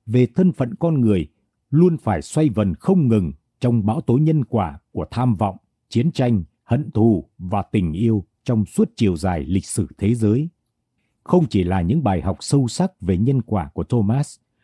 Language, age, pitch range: Vietnamese, 60-79, 105-155 Hz